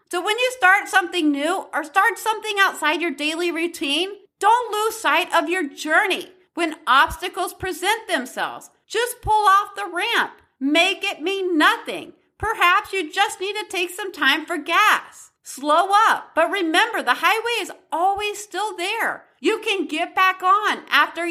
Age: 40-59